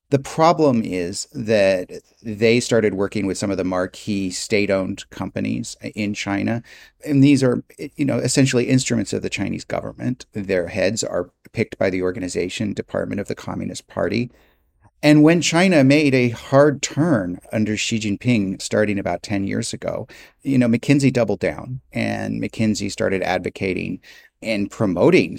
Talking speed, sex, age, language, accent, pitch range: 155 wpm, male, 30-49, English, American, 95-130 Hz